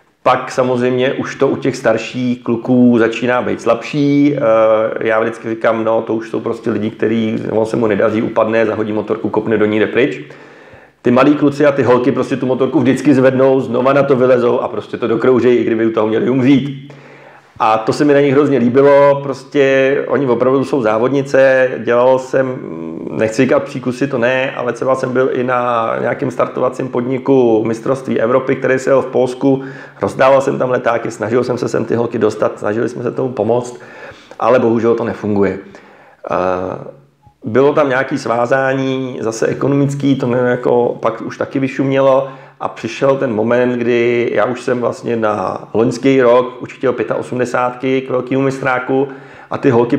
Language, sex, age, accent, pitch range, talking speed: Czech, male, 40-59, native, 115-135 Hz, 175 wpm